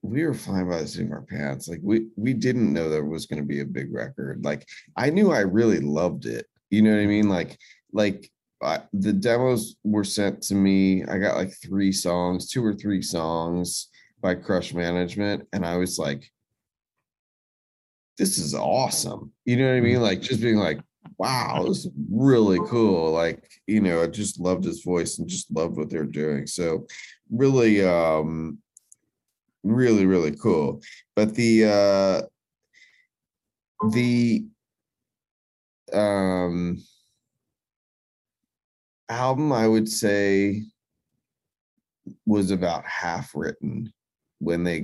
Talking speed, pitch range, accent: 150 wpm, 85-105 Hz, American